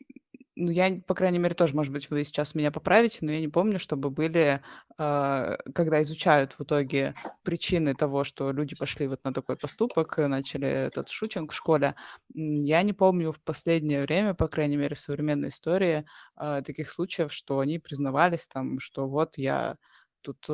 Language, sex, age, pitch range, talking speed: Russian, female, 20-39, 145-165 Hz, 175 wpm